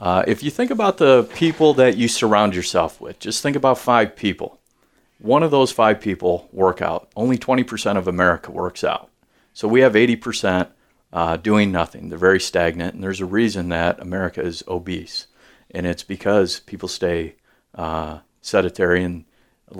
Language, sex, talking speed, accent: English, male, 175 wpm, American